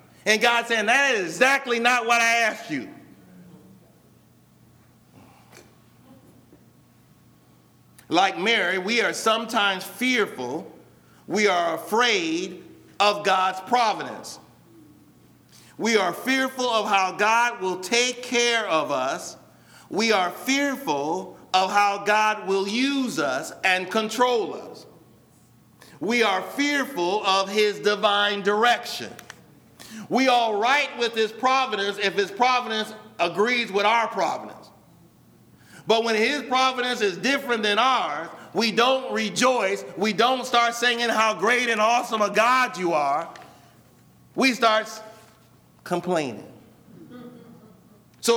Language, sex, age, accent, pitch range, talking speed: English, male, 50-69, American, 205-245 Hz, 115 wpm